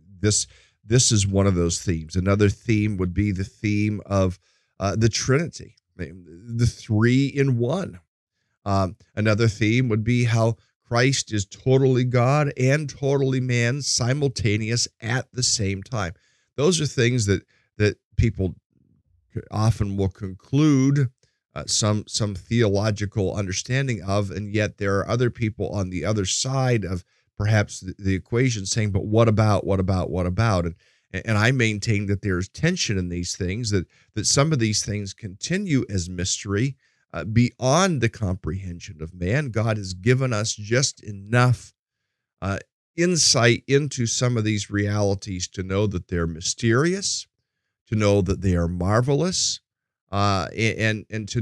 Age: 50-69